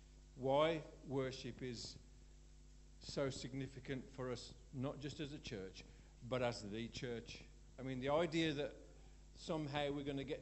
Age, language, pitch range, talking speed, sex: 50-69, English, 125-160 Hz, 150 wpm, male